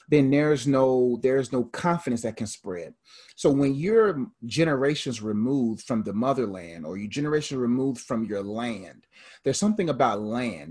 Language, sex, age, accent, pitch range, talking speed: English, male, 30-49, American, 115-140 Hz, 155 wpm